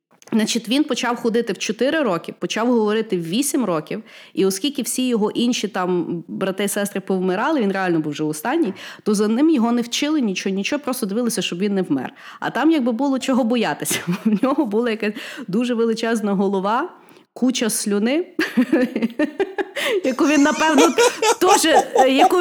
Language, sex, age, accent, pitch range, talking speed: Ukrainian, female, 20-39, native, 205-275 Hz, 150 wpm